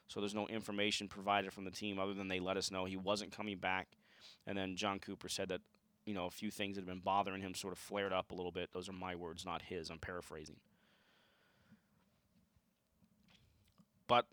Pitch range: 95-120 Hz